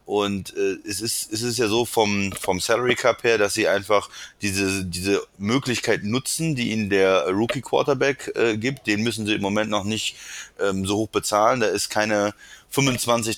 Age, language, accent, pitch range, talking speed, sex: 30-49, German, German, 100-115 Hz, 185 wpm, male